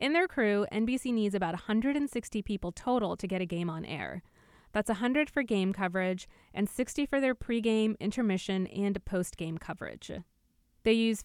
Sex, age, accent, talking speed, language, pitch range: female, 20-39, American, 165 wpm, English, 190-235 Hz